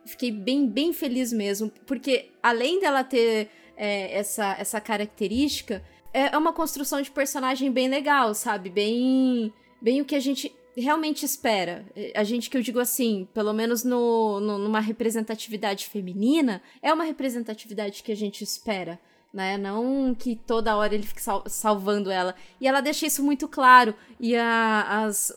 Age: 20-39